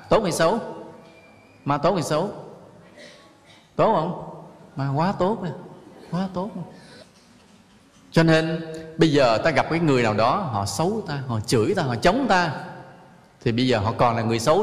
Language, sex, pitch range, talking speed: English, male, 120-175 Hz, 170 wpm